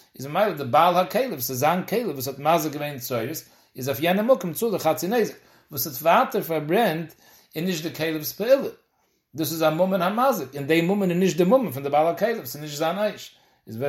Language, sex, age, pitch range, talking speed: English, male, 60-79, 140-185 Hz, 60 wpm